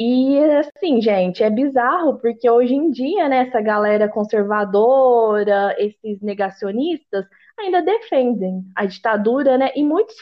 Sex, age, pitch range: female, 20-39, 210-265 Hz